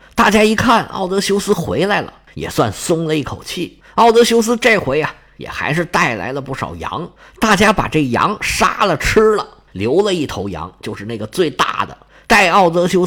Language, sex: Chinese, male